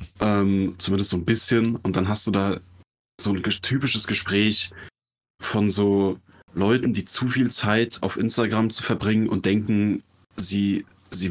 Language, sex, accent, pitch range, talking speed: German, male, German, 95-115 Hz, 160 wpm